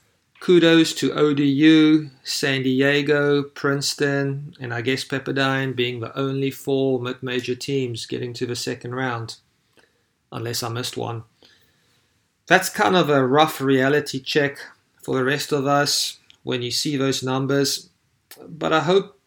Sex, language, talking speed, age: male, English, 140 wpm, 40-59